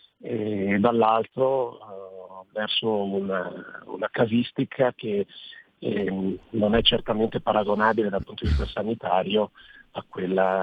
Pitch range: 95-110 Hz